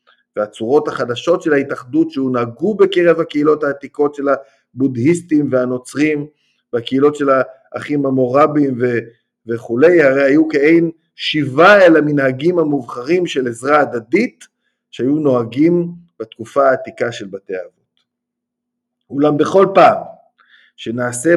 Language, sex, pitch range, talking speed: Hebrew, male, 120-165 Hz, 105 wpm